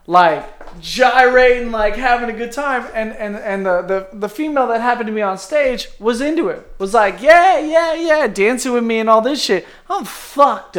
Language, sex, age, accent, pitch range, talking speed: English, male, 20-39, American, 170-245 Hz, 205 wpm